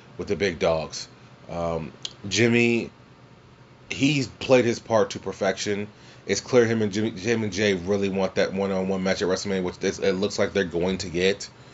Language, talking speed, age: English, 185 wpm, 30-49